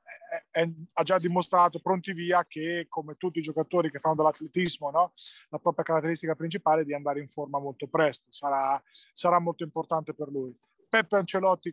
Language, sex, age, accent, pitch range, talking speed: Italian, male, 20-39, native, 155-185 Hz, 180 wpm